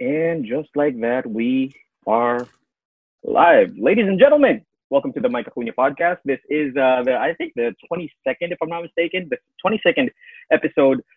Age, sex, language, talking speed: 30-49, male, English, 160 wpm